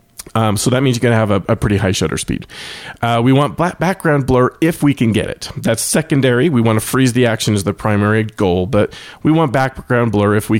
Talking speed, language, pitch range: 245 wpm, English, 100-130 Hz